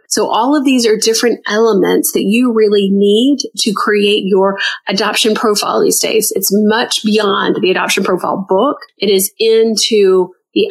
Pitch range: 200-235 Hz